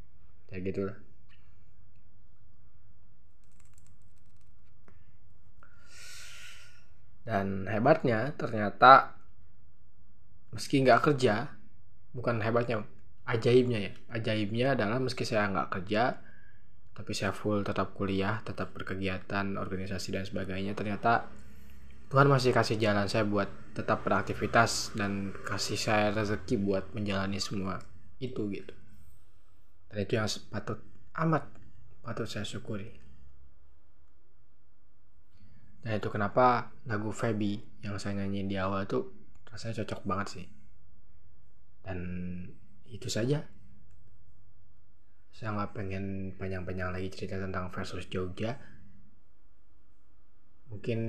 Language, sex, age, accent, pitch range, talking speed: Indonesian, male, 20-39, native, 95-110 Hz, 95 wpm